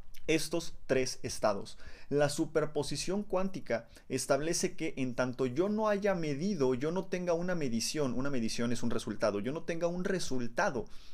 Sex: male